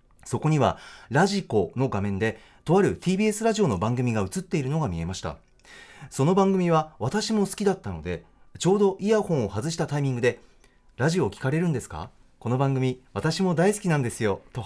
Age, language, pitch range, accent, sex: 40-59, Japanese, 115-180 Hz, native, male